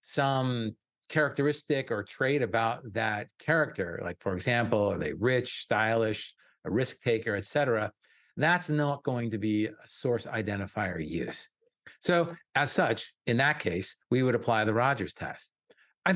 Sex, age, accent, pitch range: male, 50-69, American, 110-130 Hz